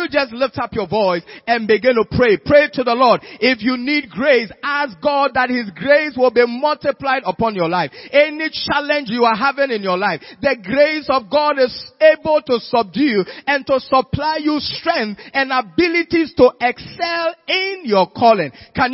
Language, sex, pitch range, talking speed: English, male, 245-300 Hz, 180 wpm